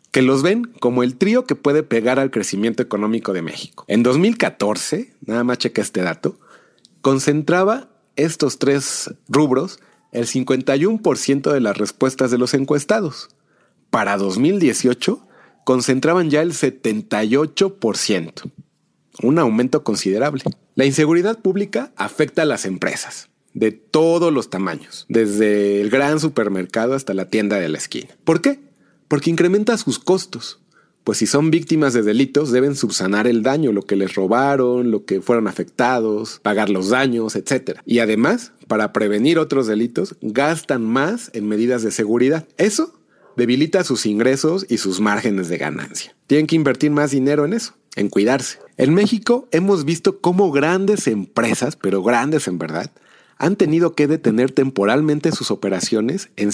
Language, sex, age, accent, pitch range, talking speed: Spanish, male, 40-59, Mexican, 110-160 Hz, 150 wpm